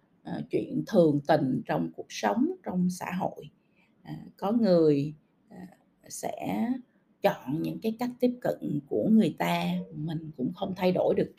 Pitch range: 165-235 Hz